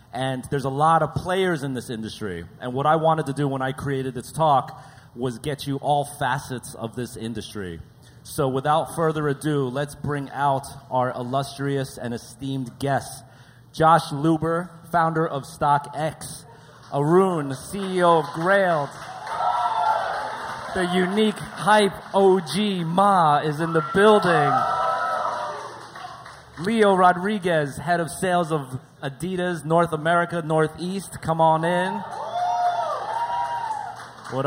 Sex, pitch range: male, 130-170 Hz